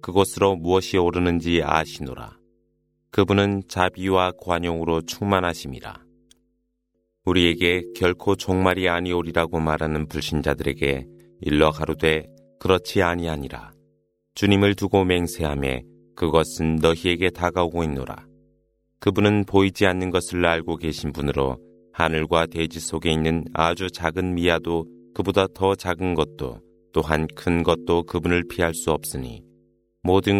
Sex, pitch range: male, 80-95 Hz